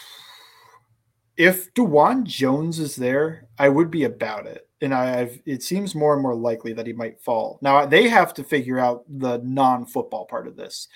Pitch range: 120-150 Hz